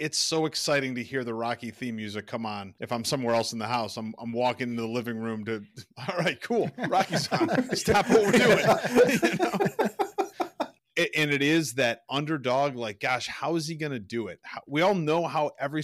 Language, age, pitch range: English, 30-49, 110-145 Hz